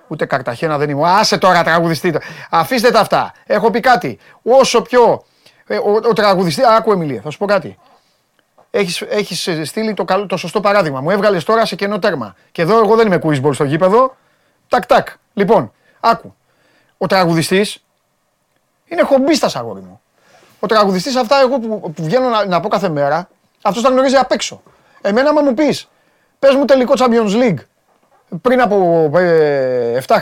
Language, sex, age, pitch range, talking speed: Greek, male, 30-49, 175-245 Hz, 120 wpm